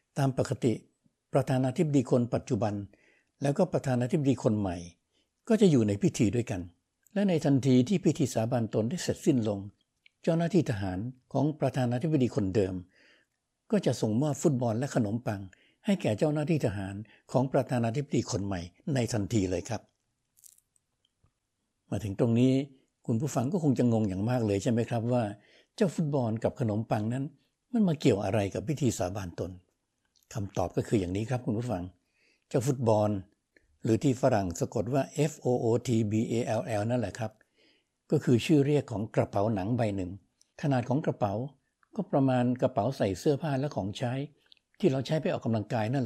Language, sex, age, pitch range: Thai, male, 60-79, 105-140 Hz